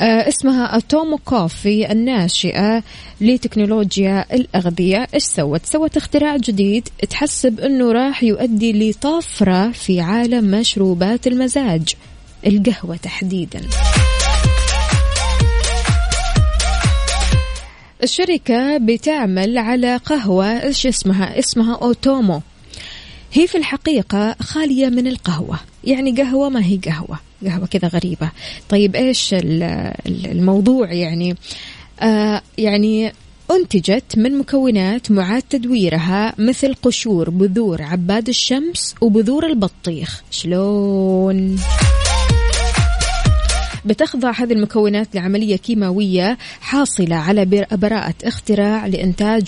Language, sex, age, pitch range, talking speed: Arabic, female, 20-39, 185-250 Hz, 90 wpm